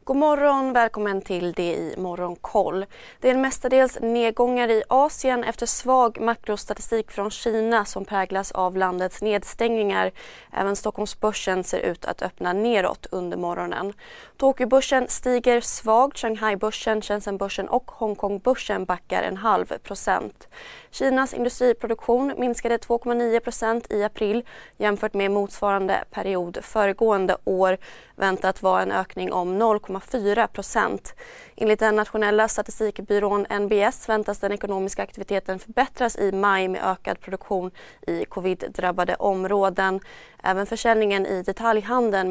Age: 20-39